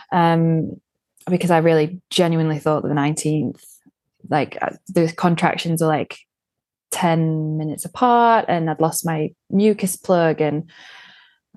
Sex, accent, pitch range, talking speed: female, British, 165-195 Hz, 125 wpm